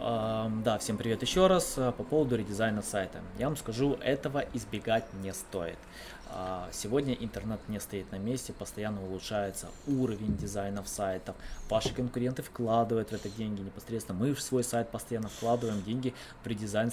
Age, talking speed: 20-39, 150 wpm